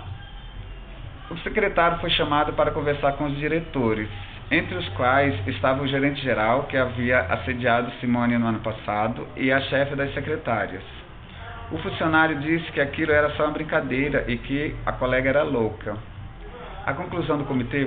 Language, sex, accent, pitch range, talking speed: Portuguese, male, Brazilian, 115-145 Hz, 155 wpm